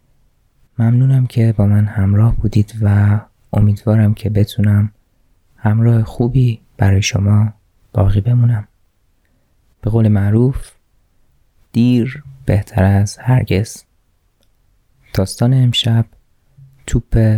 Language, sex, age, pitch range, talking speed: Persian, male, 20-39, 100-120 Hz, 90 wpm